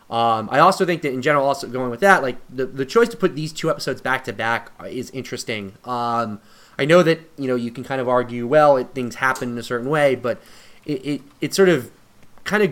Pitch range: 120-150 Hz